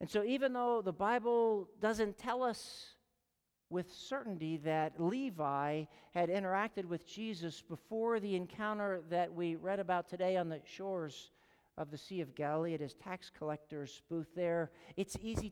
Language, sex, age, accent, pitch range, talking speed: English, male, 50-69, American, 165-205 Hz, 160 wpm